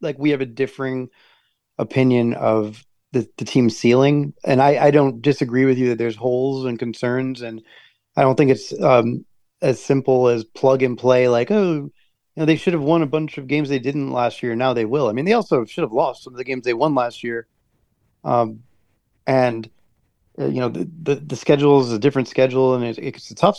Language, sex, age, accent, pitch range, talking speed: English, male, 30-49, American, 125-155 Hz, 220 wpm